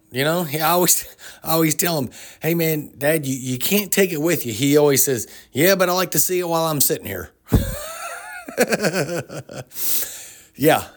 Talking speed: 180 wpm